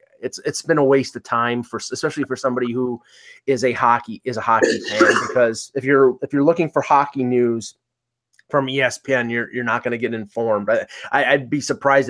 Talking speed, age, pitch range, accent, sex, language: 205 wpm, 30-49, 125-150 Hz, American, male, English